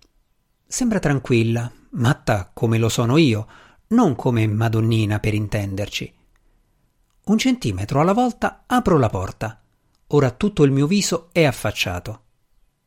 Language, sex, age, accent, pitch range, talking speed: Italian, male, 50-69, native, 110-165 Hz, 120 wpm